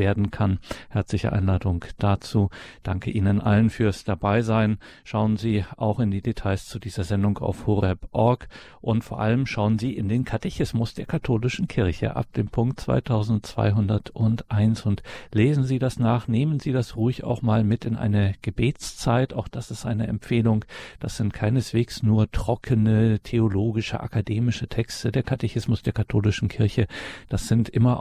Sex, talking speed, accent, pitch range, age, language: male, 155 wpm, German, 105-115 Hz, 50-69, German